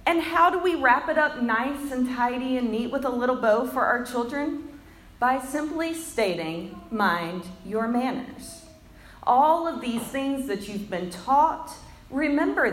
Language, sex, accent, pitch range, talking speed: English, female, American, 200-270 Hz, 160 wpm